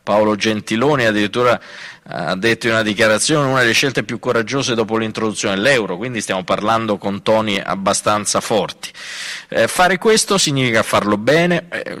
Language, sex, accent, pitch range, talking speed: Italian, male, native, 95-115 Hz, 150 wpm